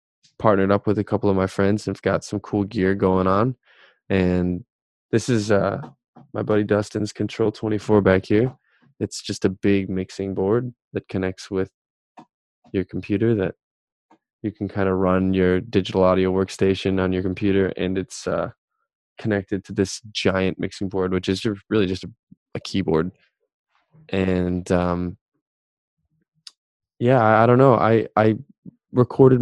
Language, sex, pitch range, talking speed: English, male, 95-105 Hz, 155 wpm